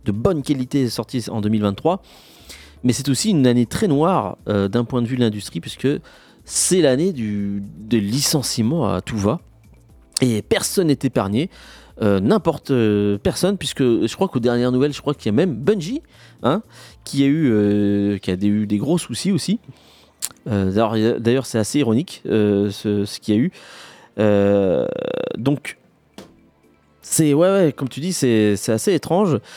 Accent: French